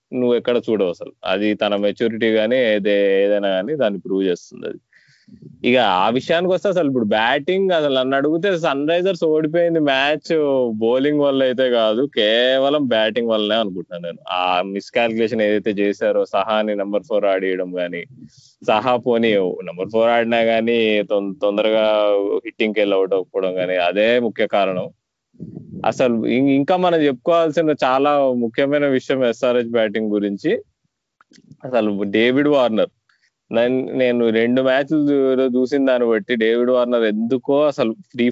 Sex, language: male, Telugu